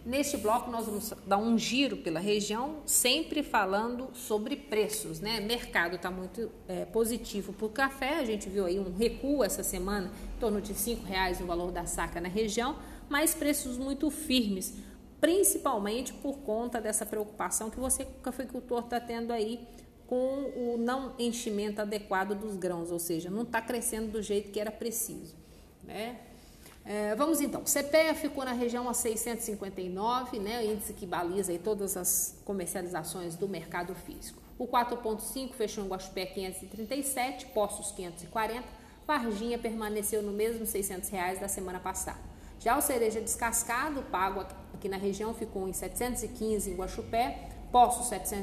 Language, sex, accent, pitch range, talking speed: Portuguese, female, Brazilian, 195-245 Hz, 160 wpm